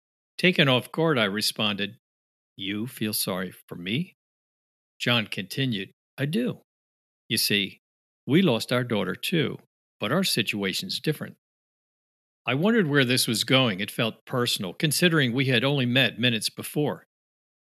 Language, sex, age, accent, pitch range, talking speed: English, male, 50-69, American, 105-145 Hz, 140 wpm